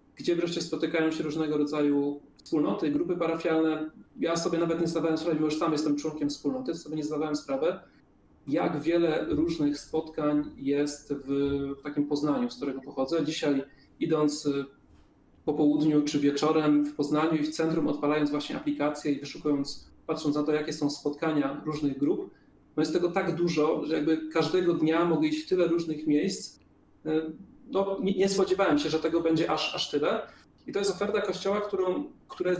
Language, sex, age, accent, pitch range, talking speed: Polish, male, 40-59, native, 150-175 Hz, 175 wpm